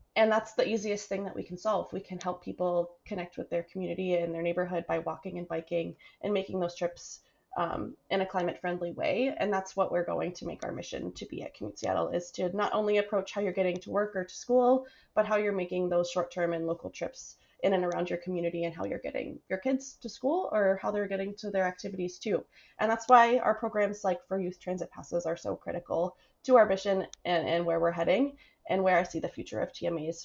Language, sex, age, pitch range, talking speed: English, female, 20-39, 175-210 Hz, 235 wpm